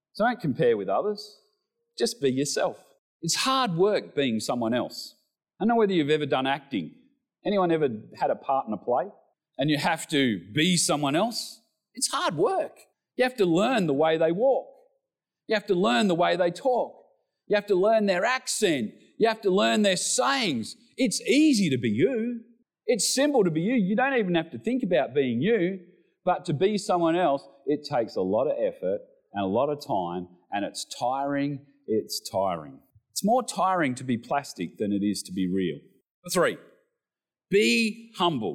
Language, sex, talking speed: English, male, 190 wpm